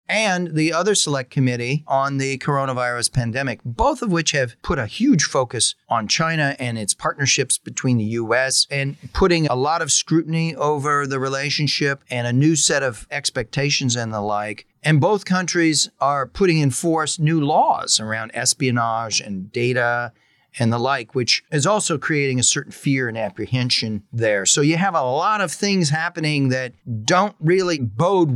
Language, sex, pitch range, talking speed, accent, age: English, male, 120-160 Hz, 170 wpm, American, 40-59